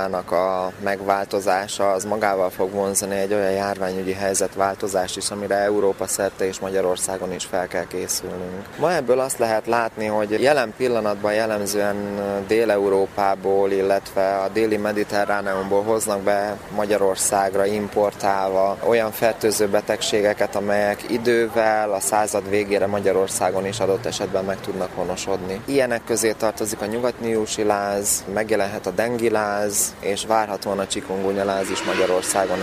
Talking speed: 125 wpm